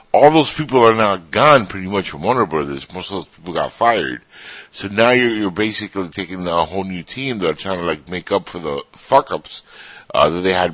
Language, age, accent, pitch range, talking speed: English, 60-79, American, 90-115 Hz, 235 wpm